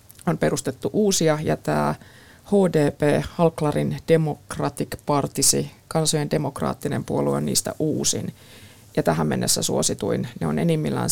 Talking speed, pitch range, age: 120 wpm, 105-175 Hz, 20-39